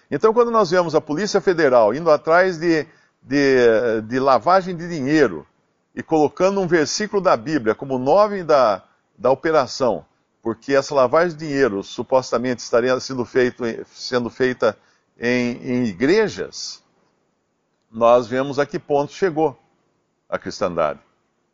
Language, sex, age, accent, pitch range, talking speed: Portuguese, male, 50-69, Brazilian, 120-165 Hz, 130 wpm